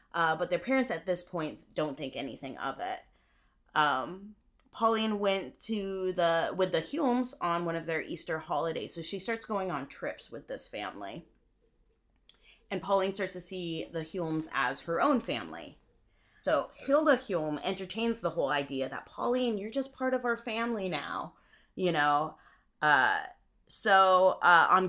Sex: female